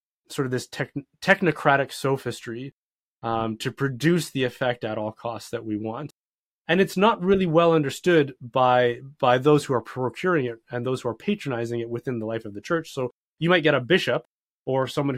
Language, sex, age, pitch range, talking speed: English, male, 20-39, 120-155 Hz, 195 wpm